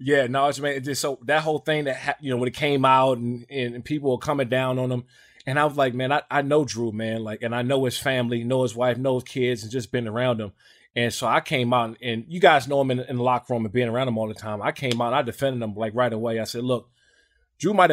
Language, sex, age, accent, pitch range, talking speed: English, male, 20-39, American, 125-145 Hz, 300 wpm